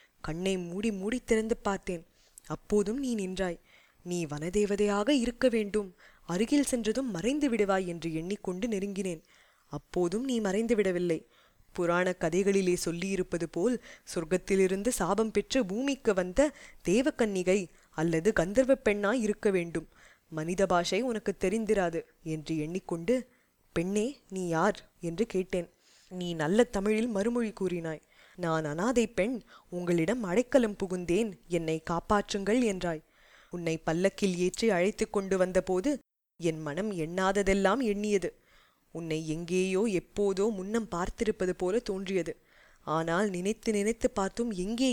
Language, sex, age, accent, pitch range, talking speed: Tamil, female, 20-39, native, 175-215 Hz, 115 wpm